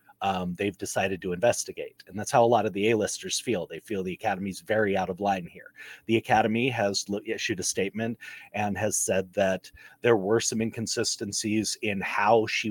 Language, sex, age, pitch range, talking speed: English, male, 30-49, 95-115 Hz, 190 wpm